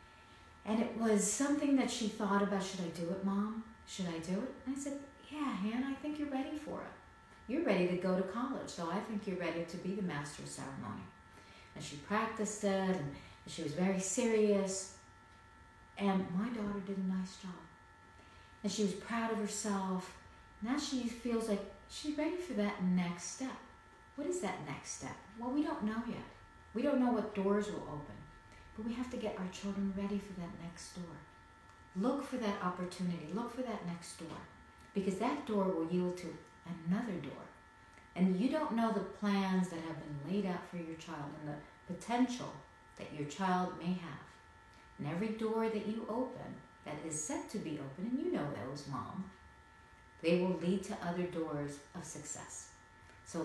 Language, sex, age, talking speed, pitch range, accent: English, female, 40-59, 190 wpm, 160-225 Hz, American